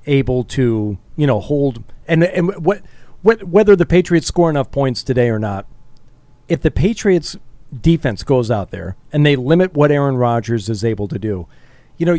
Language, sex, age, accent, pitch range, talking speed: English, male, 40-59, American, 130-170 Hz, 180 wpm